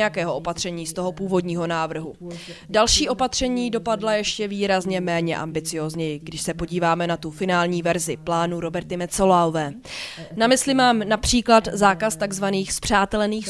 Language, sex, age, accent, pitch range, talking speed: Czech, female, 20-39, native, 175-240 Hz, 135 wpm